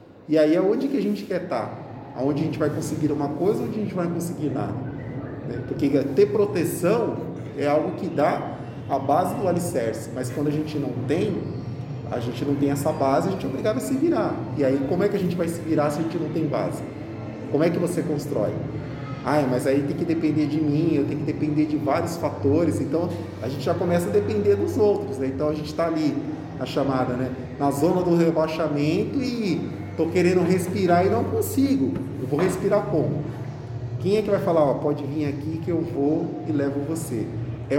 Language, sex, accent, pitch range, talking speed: Portuguese, male, Brazilian, 135-165 Hz, 215 wpm